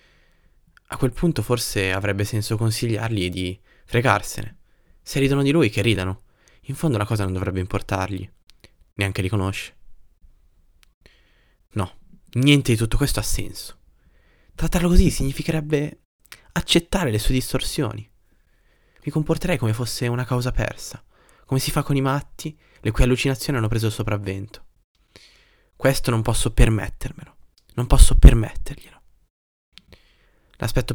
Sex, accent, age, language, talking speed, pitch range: male, native, 20-39, Italian, 130 wpm, 100-125 Hz